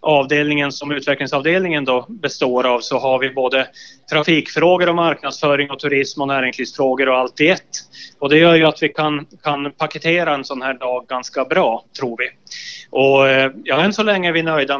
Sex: male